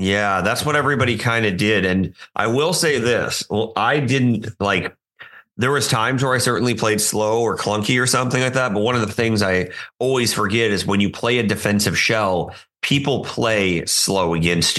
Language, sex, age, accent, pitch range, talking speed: English, male, 30-49, American, 85-110 Hz, 200 wpm